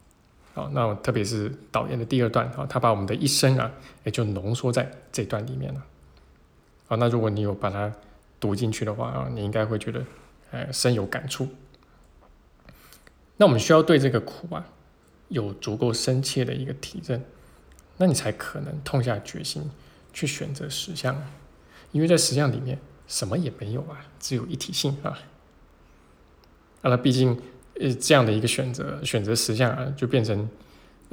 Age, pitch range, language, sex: 20-39, 105-135 Hz, Chinese, male